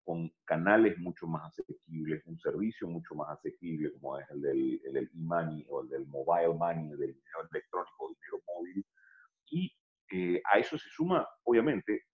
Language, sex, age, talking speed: Spanish, male, 40-59, 180 wpm